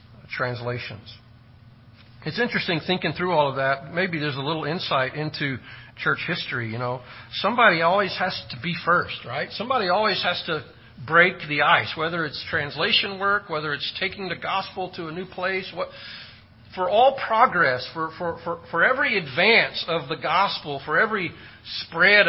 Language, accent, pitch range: English, American, 130-180 Hz